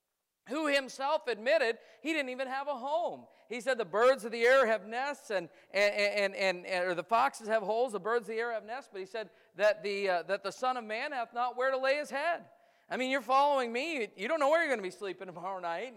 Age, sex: 50-69, male